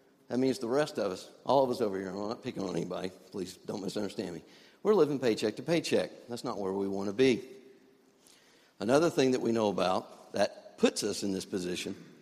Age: 50-69